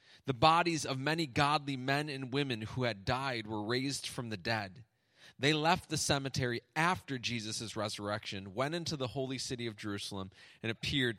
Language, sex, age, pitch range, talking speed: English, male, 30-49, 105-135 Hz, 170 wpm